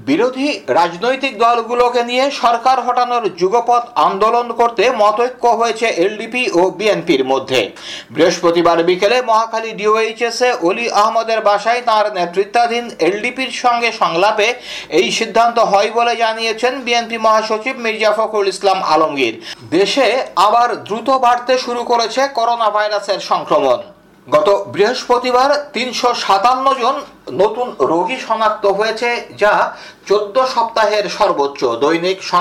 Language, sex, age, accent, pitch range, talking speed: Bengali, male, 60-79, native, 205-240 Hz, 60 wpm